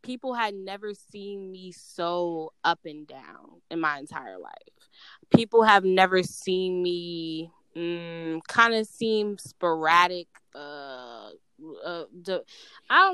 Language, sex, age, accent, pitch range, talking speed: English, female, 10-29, American, 175-210 Hz, 120 wpm